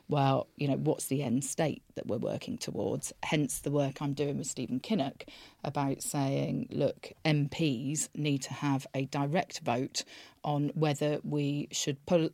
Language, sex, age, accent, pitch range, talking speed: English, female, 40-59, British, 140-155 Hz, 165 wpm